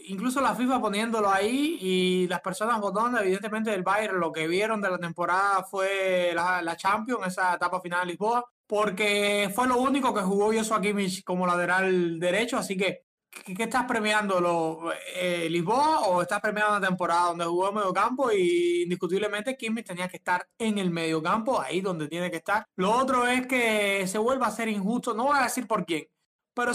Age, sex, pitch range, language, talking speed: 20-39, male, 185-235 Hz, Spanish, 190 wpm